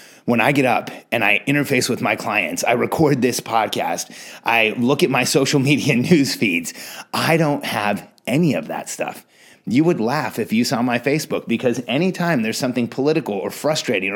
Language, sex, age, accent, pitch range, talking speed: English, male, 30-49, American, 135-180 Hz, 185 wpm